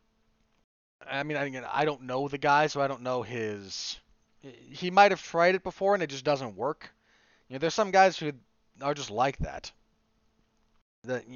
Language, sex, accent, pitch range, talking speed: English, male, American, 120-160 Hz, 190 wpm